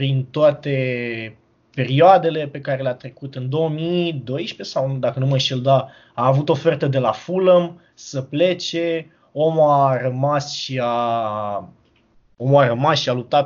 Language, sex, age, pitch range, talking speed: Romanian, male, 20-39, 130-170 Hz, 150 wpm